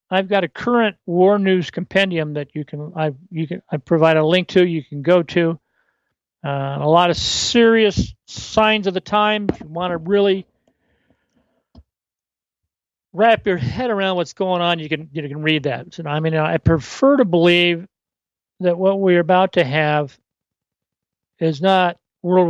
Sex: male